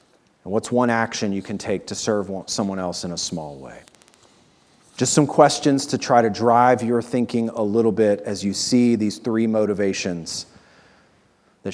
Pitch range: 105-125 Hz